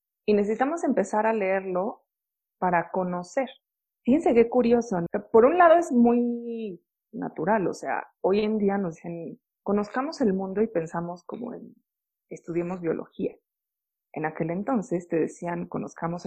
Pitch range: 180-230 Hz